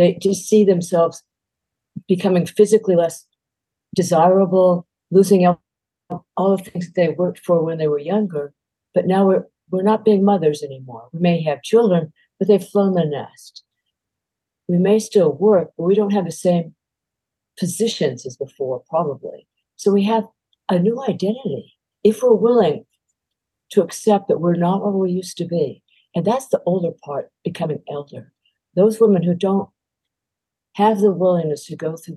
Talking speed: 160 wpm